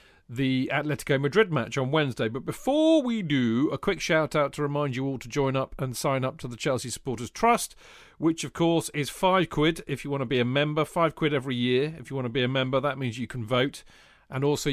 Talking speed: 245 wpm